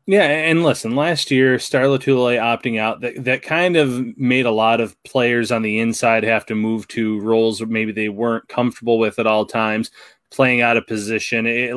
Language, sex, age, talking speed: English, male, 20-39, 200 wpm